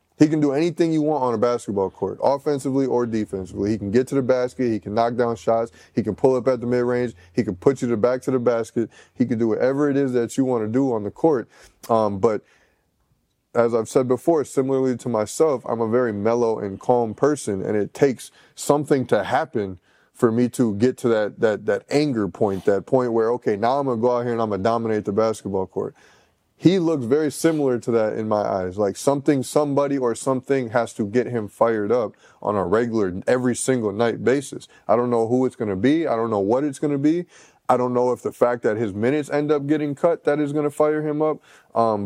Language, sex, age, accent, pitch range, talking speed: English, male, 20-39, American, 110-135 Hz, 240 wpm